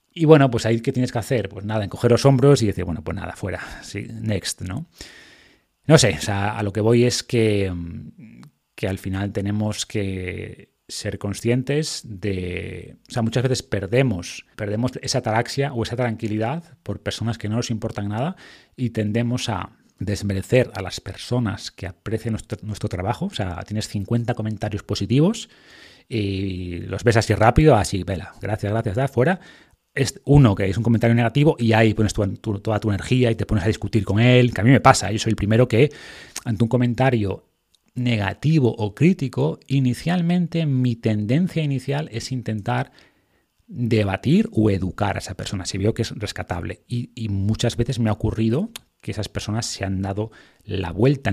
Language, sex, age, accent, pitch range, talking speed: Spanish, male, 30-49, Spanish, 100-125 Hz, 185 wpm